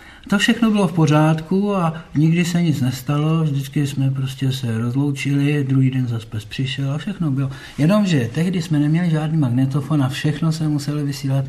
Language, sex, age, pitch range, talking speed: Czech, male, 60-79, 130-155 Hz, 170 wpm